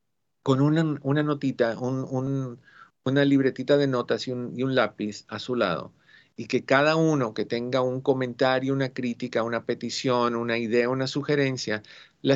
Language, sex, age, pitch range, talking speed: Spanish, male, 50-69, 110-140 Hz, 170 wpm